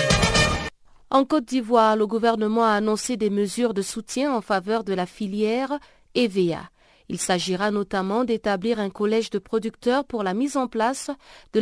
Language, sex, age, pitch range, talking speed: French, female, 40-59, 190-235 Hz, 160 wpm